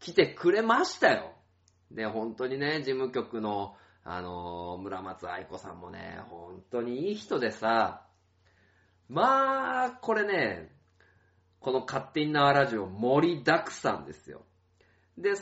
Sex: male